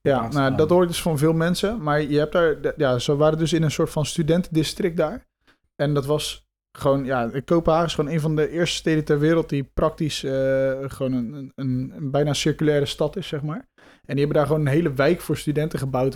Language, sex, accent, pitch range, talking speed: Dutch, male, Dutch, 135-155 Hz, 225 wpm